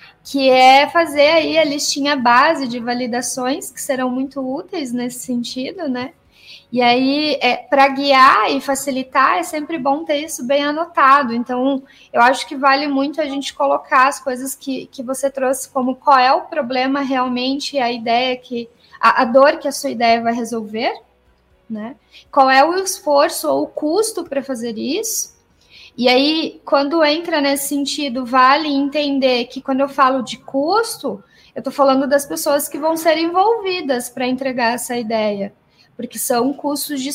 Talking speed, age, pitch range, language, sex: 170 wpm, 10-29, 255-300 Hz, Portuguese, female